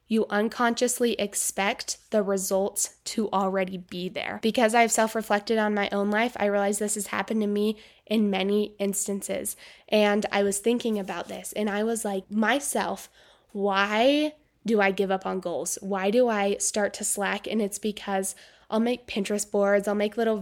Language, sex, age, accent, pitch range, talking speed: English, female, 10-29, American, 200-230 Hz, 175 wpm